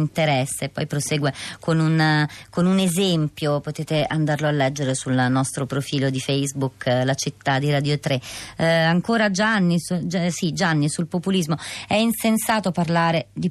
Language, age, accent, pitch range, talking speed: Italian, 30-49, native, 150-190 Hz, 155 wpm